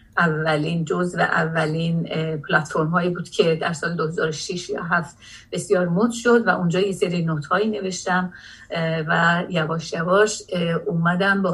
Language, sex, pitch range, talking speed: Persian, female, 160-195 Hz, 145 wpm